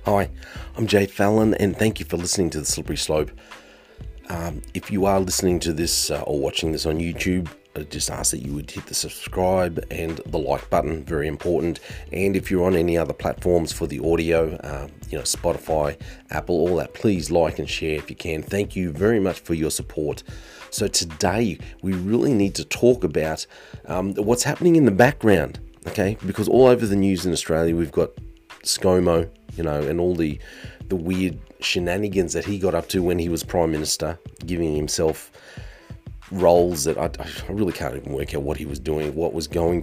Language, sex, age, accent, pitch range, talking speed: English, male, 30-49, Australian, 80-95 Hz, 200 wpm